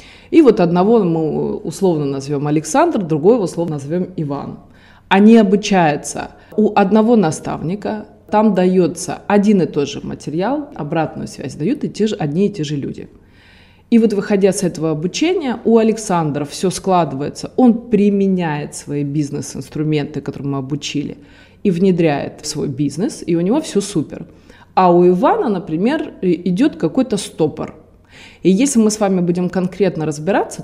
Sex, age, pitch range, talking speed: female, 20-39, 155-205 Hz, 150 wpm